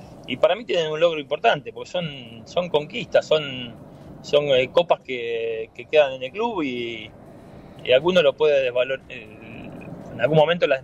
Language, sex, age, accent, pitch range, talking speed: Spanish, male, 20-39, Argentinian, 125-180 Hz, 165 wpm